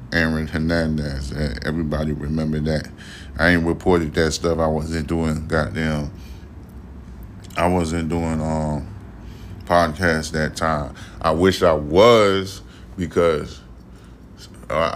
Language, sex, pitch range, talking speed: English, male, 75-90 Hz, 105 wpm